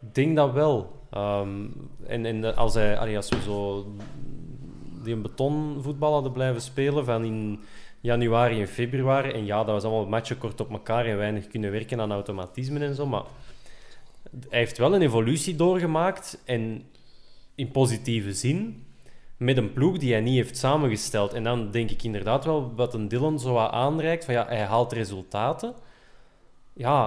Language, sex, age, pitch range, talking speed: Dutch, male, 20-39, 110-140 Hz, 170 wpm